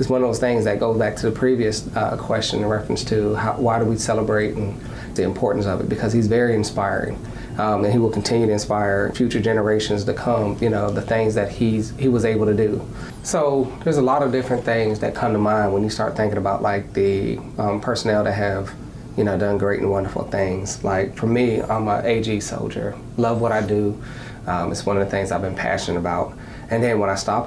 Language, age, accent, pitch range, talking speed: English, 30-49, American, 100-115 Hz, 235 wpm